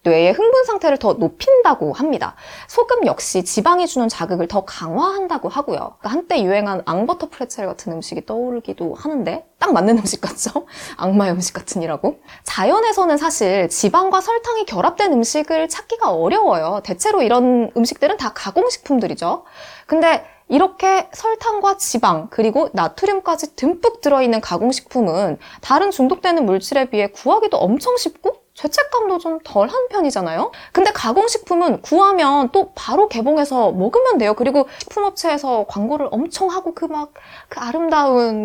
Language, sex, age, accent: Korean, female, 20-39, native